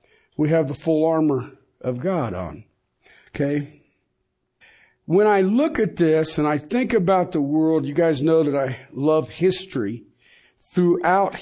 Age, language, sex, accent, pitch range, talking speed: 50-69, English, male, American, 140-185 Hz, 145 wpm